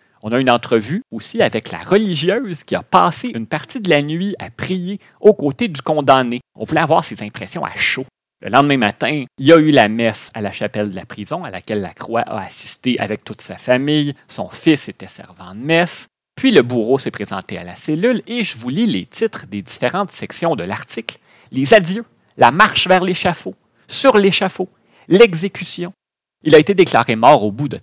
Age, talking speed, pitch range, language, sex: 30-49, 205 wpm, 120-185 Hz, French, male